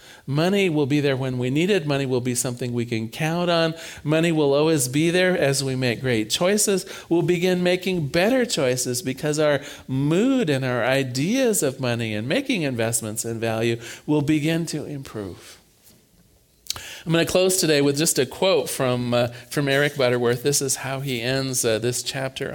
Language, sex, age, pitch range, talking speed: English, male, 40-59, 125-165 Hz, 185 wpm